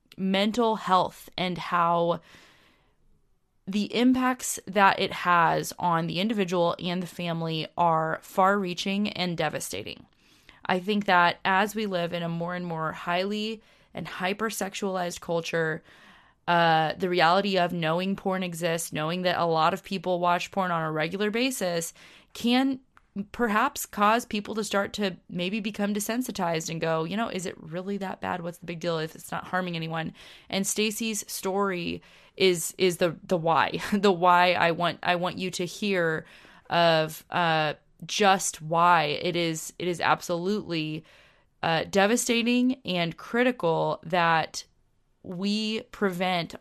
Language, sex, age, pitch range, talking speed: English, female, 20-39, 170-200 Hz, 145 wpm